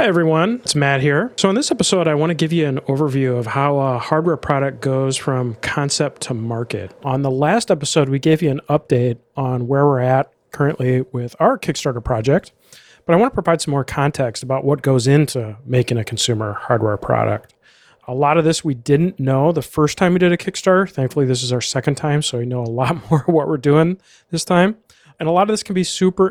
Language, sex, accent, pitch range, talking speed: English, male, American, 125-160 Hz, 230 wpm